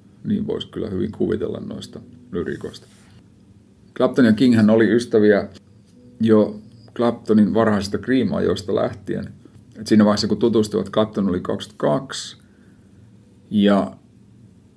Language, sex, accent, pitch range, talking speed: Finnish, male, native, 100-110 Hz, 100 wpm